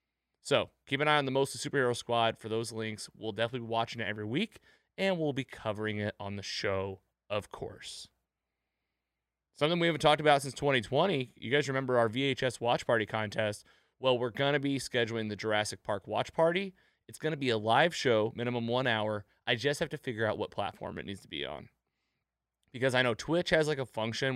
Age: 30-49